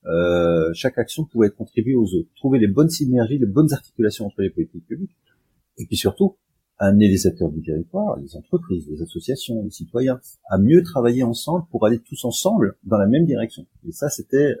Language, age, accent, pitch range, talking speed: French, 30-49, French, 95-130 Hz, 195 wpm